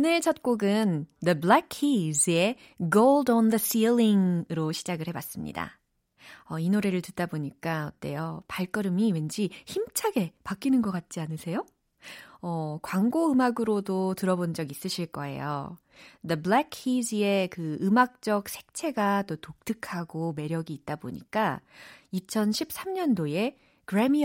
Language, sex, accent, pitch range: Korean, female, native, 175-250 Hz